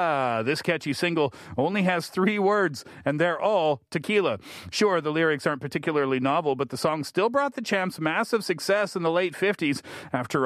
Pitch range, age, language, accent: 140-185 Hz, 40-59, Korean, American